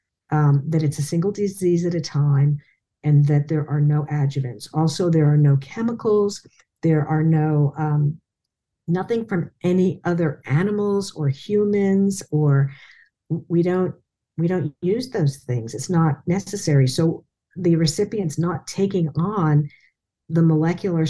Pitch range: 145-175 Hz